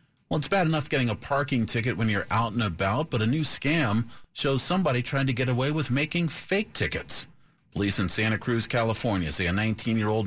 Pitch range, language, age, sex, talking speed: 100-140 Hz, English, 40-59, male, 205 wpm